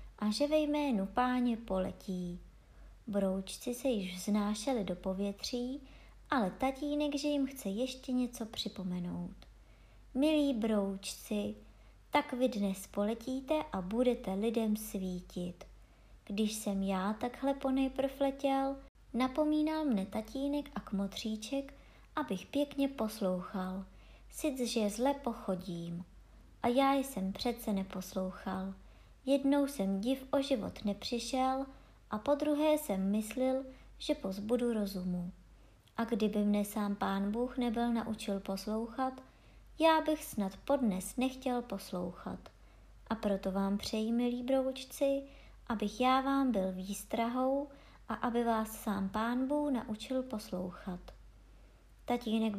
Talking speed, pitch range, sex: 115 wpm, 195-265 Hz, male